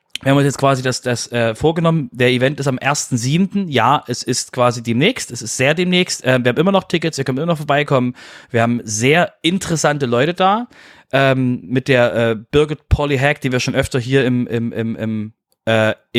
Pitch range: 115-140 Hz